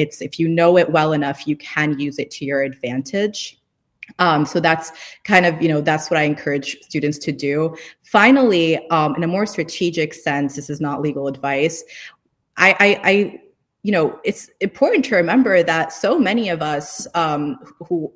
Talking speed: 185 wpm